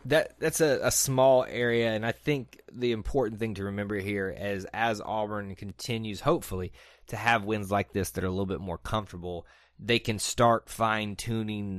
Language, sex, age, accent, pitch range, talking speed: English, male, 30-49, American, 95-120 Hz, 185 wpm